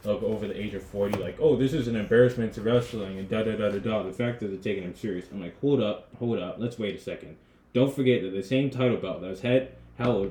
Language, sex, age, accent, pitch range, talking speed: English, male, 20-39, American, 105-135 Hz, 250 wpm